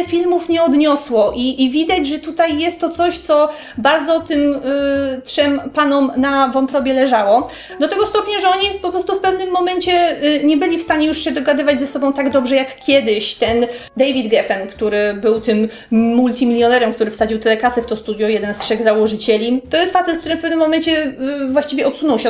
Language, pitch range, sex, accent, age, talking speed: Polish, 235-305 Hz, female, native, 30-49, 185 wpm